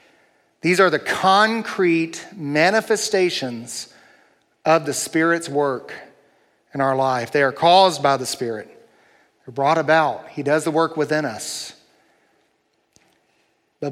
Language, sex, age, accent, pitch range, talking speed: English, male, 40-59, American, 155-210 Hz, 120 wpm